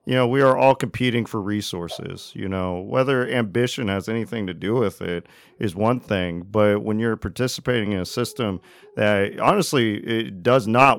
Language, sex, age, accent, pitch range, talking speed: English, male, 40-59, American, 100-120 Hz, 180 wpm